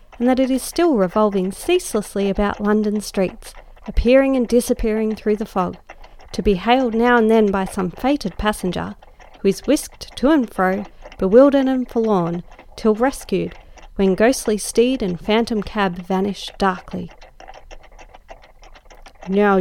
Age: 40-59